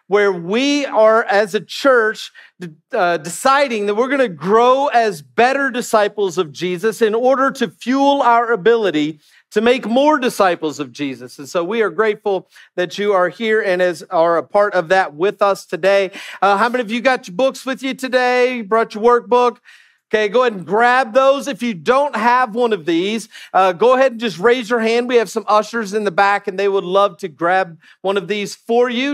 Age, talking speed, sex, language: 40-59, 210 wpm, male, English